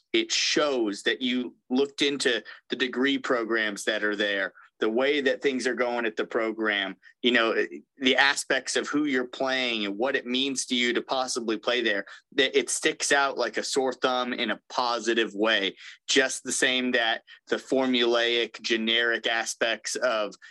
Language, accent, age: English, American, 30-49